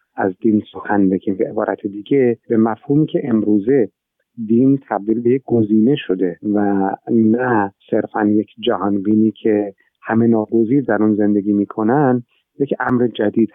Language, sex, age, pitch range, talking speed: Persian, male, 50-69, 105-125 Hz, 140 wpm